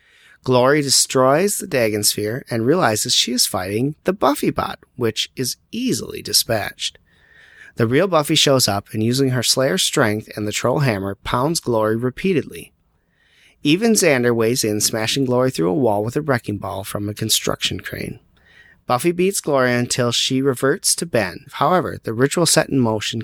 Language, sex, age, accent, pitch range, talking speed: English, male, 30-49, American, 110-140 Hz, 170 wpm